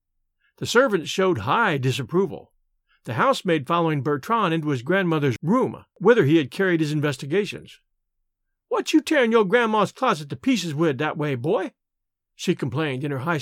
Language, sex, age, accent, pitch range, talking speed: English, male, 50-69, American, 155-260 Hz, 160 wpm